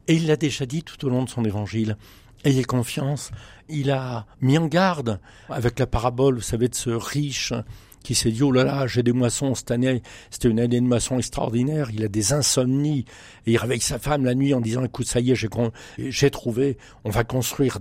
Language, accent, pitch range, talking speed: French, French, 110-135 Hz, 230 wpm